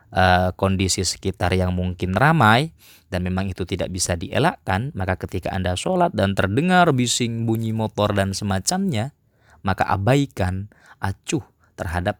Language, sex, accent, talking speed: Indonesian, male, native, 135 wpm